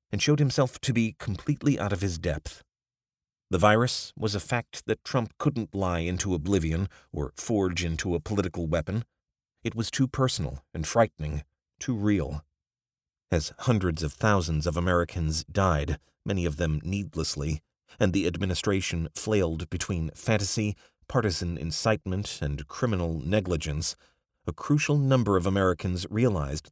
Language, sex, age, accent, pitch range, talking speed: English, male, 40-59, American, 80-110 Hz, 140 wpm